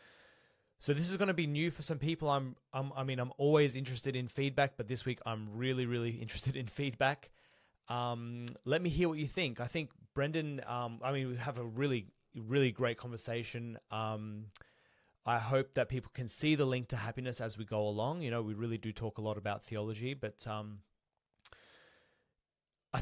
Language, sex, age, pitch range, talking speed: English, male, 20-39, 115-135 Hz, 200 wpm